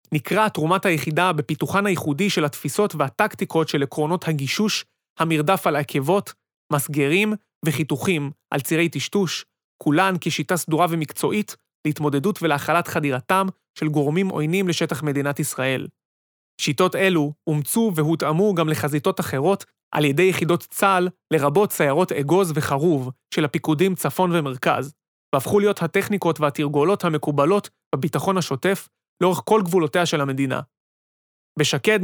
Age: 30-49